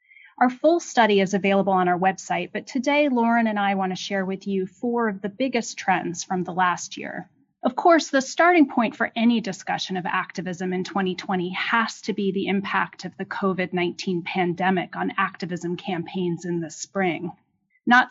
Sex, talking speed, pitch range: female, 180 wpm, 180-225 Hz